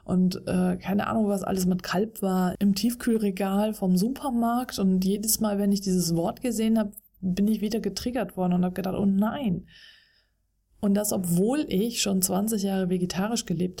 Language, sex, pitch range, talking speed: German, female, 180-205 Hz, 180 wpm